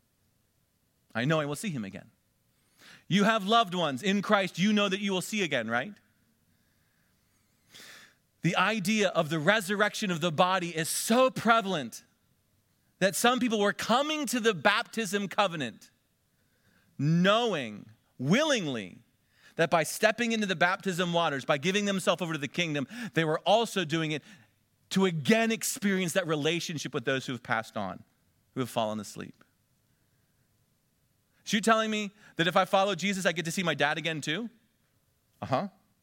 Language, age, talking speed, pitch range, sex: English, 40-59, 160 wpm, 135-210 Hz, male